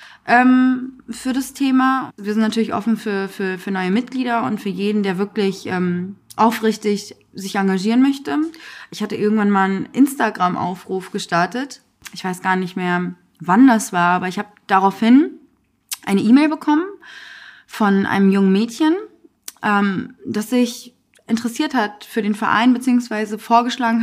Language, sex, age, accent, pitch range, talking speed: German, female, 20-39, German, 190-240 Hz, 145 wpm